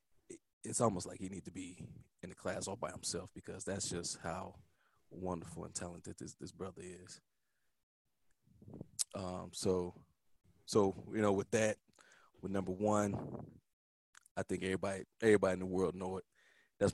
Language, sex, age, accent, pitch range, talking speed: English, male, 20-39, American, 90-105 Hz, 155 wpm